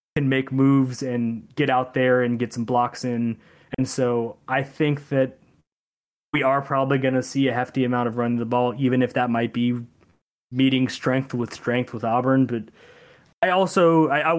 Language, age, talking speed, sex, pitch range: English, 20-39, 190 wpm, male, 125-150 Hz